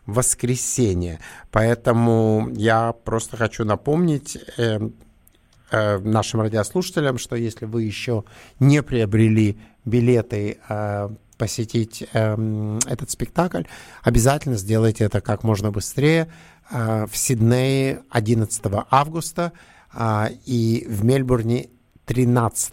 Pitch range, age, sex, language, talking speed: 105-130 Hz, 50-69, male, English, 100 wpm